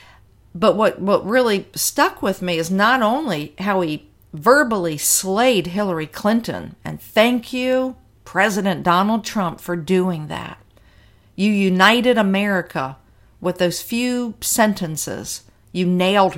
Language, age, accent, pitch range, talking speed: English, 50-69, American, 165-220 Hz, 125 wpm